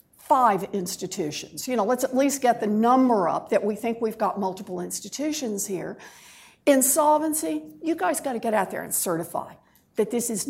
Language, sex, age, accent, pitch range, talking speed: English, female, 60-79, American, 210-300 Hz, 175 wpm